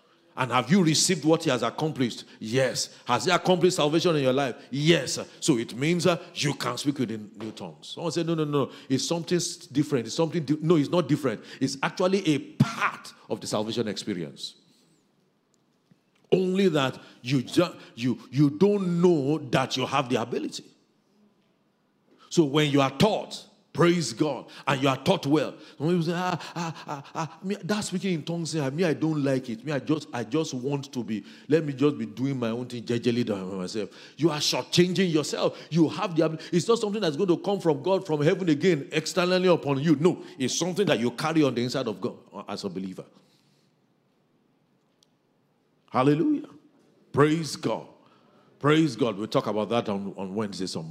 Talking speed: 195 wpm